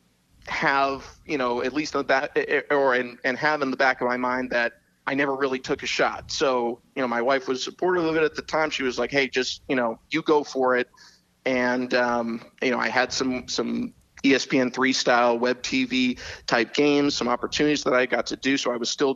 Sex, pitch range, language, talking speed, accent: male, 120-140 Hz, English, 220 wpm, American